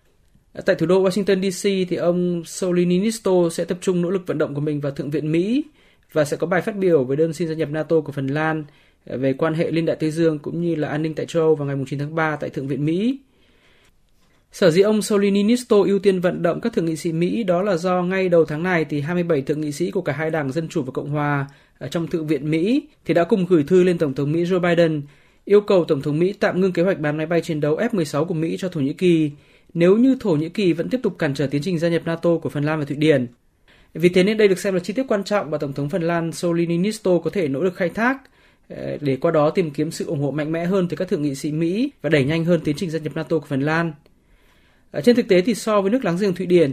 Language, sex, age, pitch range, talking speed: Vietnamese, male, 20-39, 155-190 Hz, 280 wpm